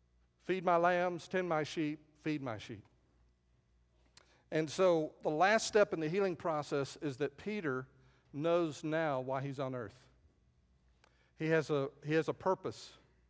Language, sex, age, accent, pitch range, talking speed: English, male, 50-69, American, 115-180 Hz, 145 wpm